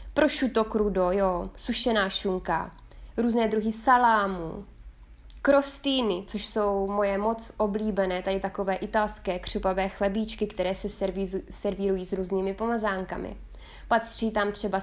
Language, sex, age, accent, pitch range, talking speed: Czech, female, 20-39, native, 190-230 Hz, 115 wpm